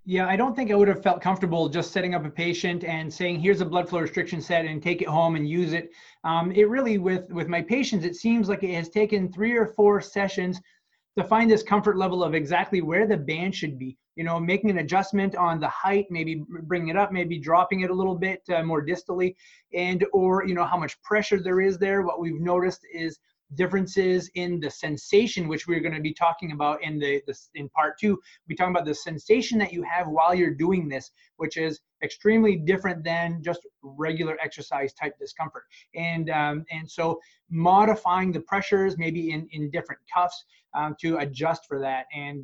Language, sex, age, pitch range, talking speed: English, male, 30-49, 150-190 Hz, 210 wpm